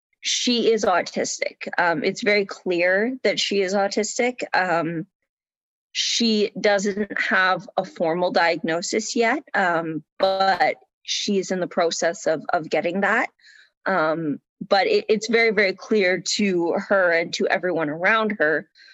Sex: female